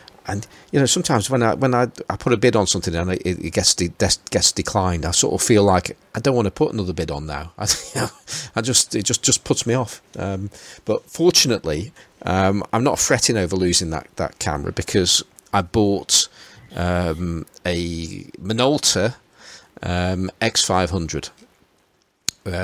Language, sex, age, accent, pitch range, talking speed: English, male, 40-59, British, 90-105 Hz, 180 wpm